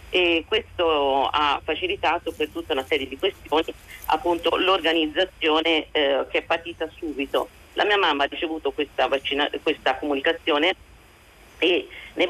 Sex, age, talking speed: female, 40-59, 135 wpm